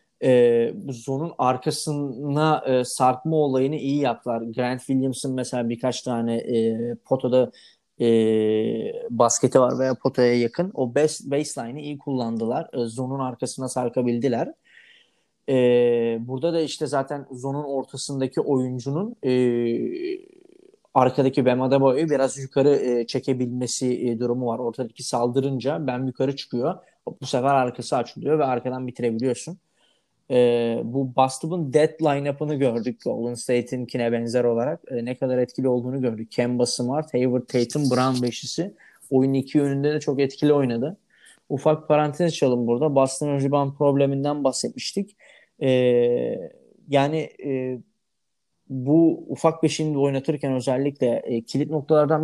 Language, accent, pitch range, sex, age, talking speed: Turkish, native, 125-150 Hz, male, 30-49, 125 wpm